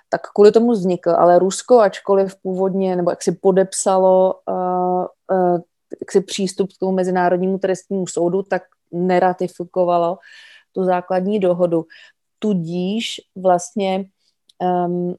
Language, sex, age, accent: Czech, female, 30-49, native